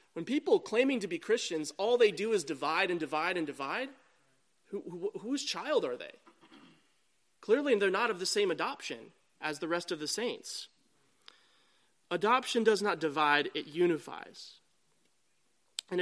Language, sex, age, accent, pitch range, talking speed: English, male, 30-49, American, 170-270 Hz, 155 wpm